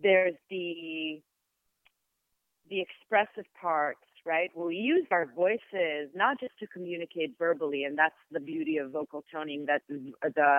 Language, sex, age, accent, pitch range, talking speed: English, female, 30-49, American, 155-210 Hz, 140 wpm